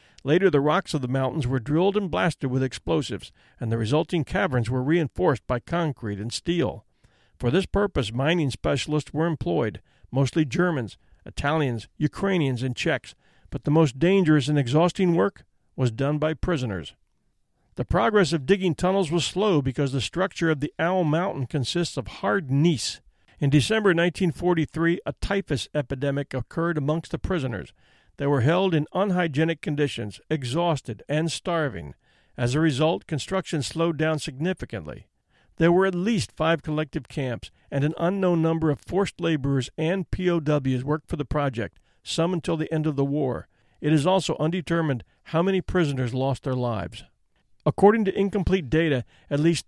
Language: English